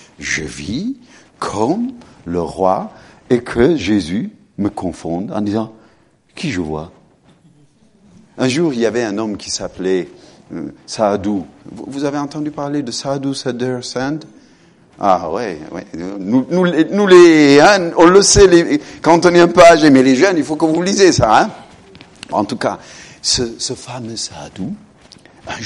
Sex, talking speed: male, 160 wpm